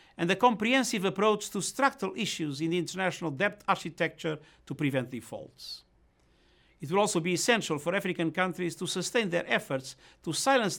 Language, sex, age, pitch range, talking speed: English, male, 50-69, 135-185 Hz, 160 wpm